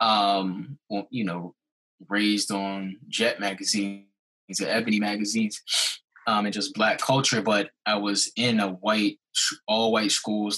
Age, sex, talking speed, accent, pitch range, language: 20-39, male, 135 wpm, American, 100-120 Hz, English